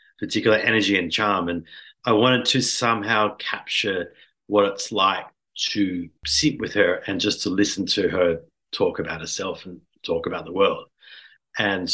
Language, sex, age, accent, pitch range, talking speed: English, male, 40-59, Australian, 95-120 Hz, 160 wpm